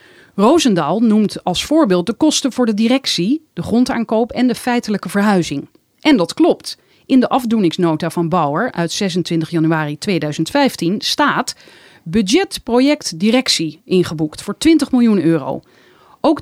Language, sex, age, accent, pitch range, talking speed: Dutch, female, 40-59, Dutch, 175-275 Hz, 135 wpm